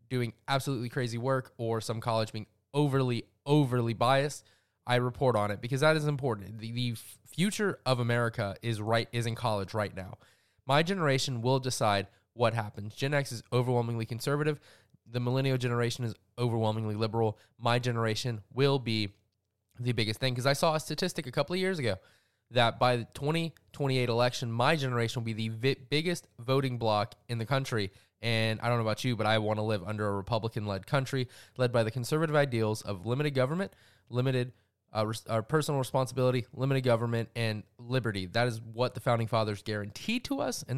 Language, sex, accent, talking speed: English, male, American, 185 wpm